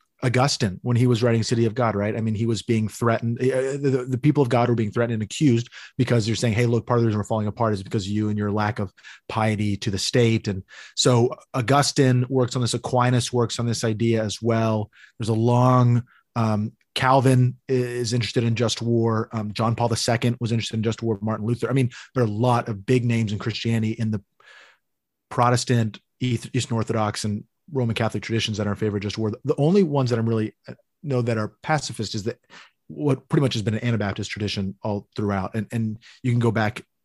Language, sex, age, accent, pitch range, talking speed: English, male, 30-49, American, 110-130 Hz, 225 wpm